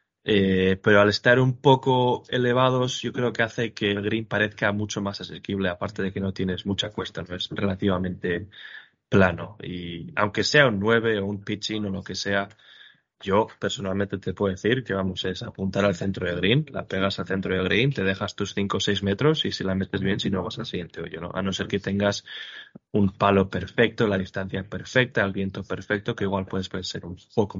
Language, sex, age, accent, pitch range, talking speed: Spanish, male, 20-39, Spanish, 95-105 Hz, 215 wpm